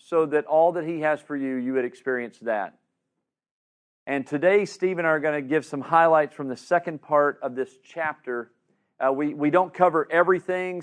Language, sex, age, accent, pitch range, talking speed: English, male, 40-59, American, 125-155 Hz, 200 wpm